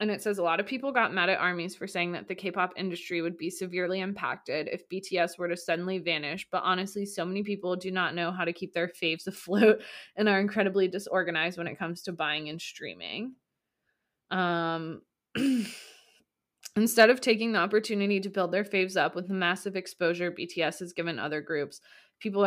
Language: English